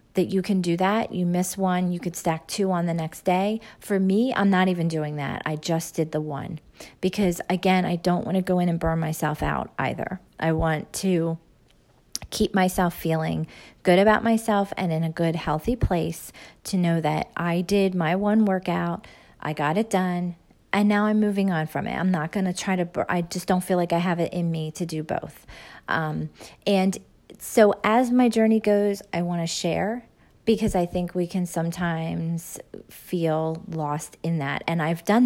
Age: 40-59